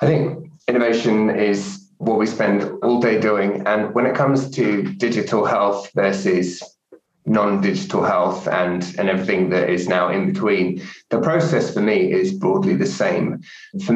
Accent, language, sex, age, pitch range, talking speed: British, English, male, 20-39, 100-125 Hz, 160 wpm